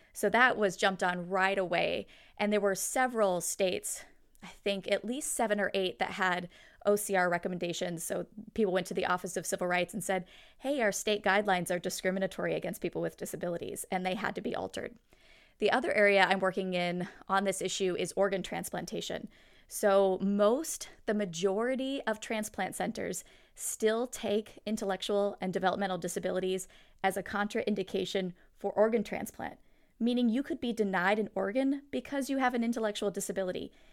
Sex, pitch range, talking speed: female, 190-225 Hz, 165 wpm